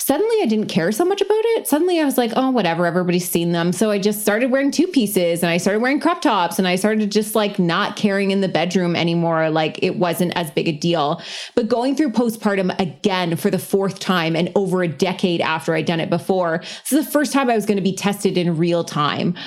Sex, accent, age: female, American, 20-39